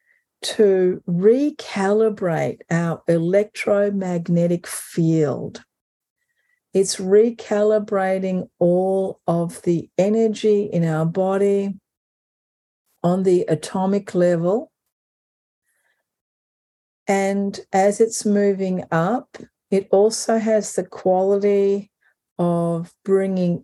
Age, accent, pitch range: 50-69, Australian, 180-210 Hz